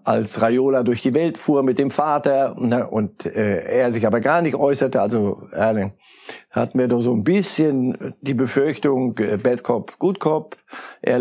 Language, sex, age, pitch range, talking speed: German, male, 60-79, 110-135 Hz, 175 wpm